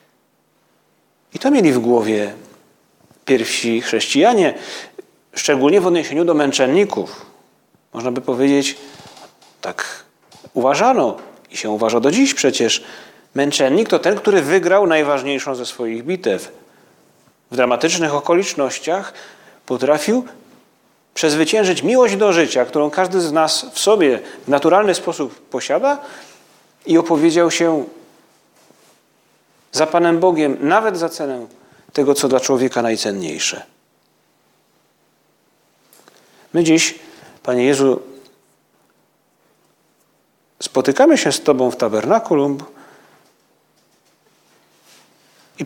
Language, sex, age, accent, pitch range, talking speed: Polish, male, 40-59, native, 130-185 Hz, 100 wpm